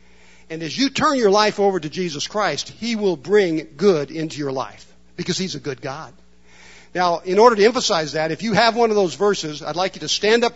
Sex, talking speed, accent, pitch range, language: male, 235 wpm, American, 145-210 Hz, English